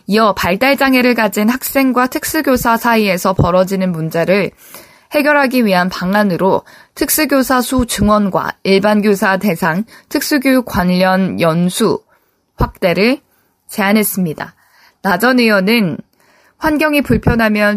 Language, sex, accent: Korean, female, native